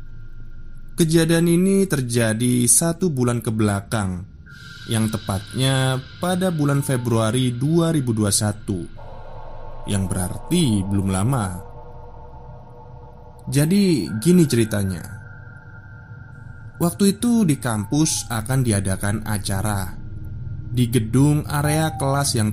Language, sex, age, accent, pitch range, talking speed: Indonesian, male, 20-39, native, 105-130 Hz, 85 wpm